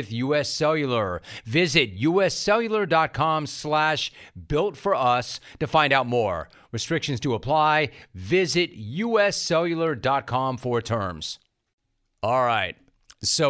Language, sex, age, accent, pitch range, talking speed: English, male, 40-59, American, 115-150 Hz, 100 wpm